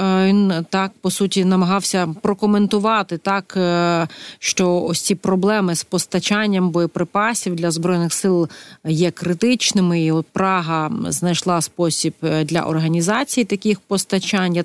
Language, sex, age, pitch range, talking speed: Ukrainian, female, 30-49, 175-210 Hz, 115 wpm